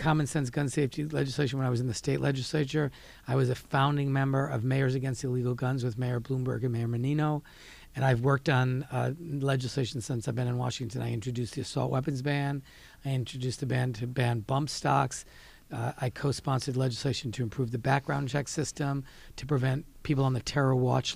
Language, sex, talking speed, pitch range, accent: English, male, 195 wpm, 125-140 Hz, American